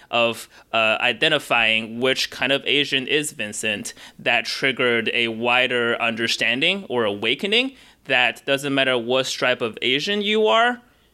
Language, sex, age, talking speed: English, male, 20-39, 135 wpm